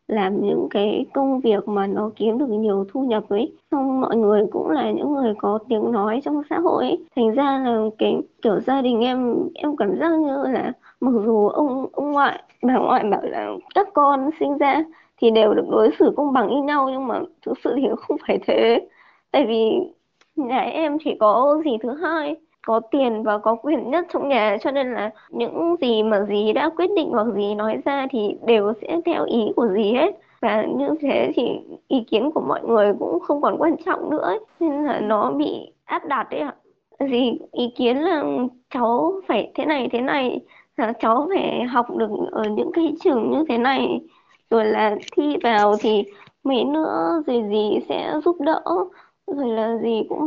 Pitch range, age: 220-310 Hz, 20-39